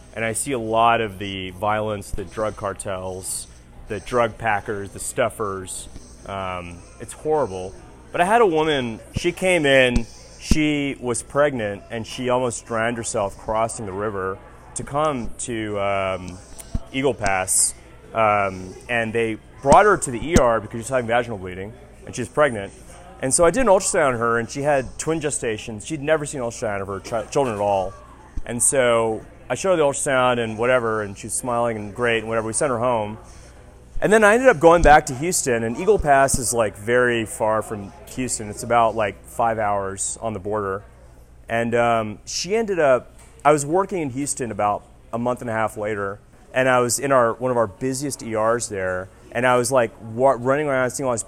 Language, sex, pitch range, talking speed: English, male, 105-135 Hz, 200 wpm